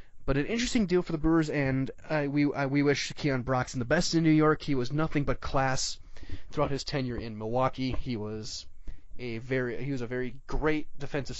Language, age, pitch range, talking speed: English, 20-39, 115-145 Hz, 210 wpm